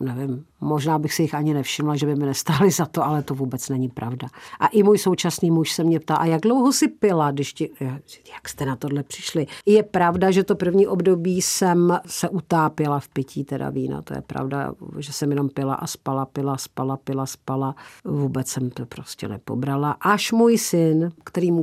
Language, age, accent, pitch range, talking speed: Czech, 50-69, native, 140-175 Hz, 205 wpm